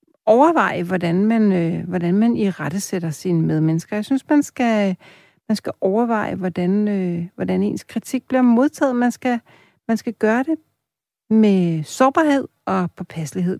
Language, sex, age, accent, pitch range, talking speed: Danish, female, 60-79, native, 175-220 Hz, 125 wpm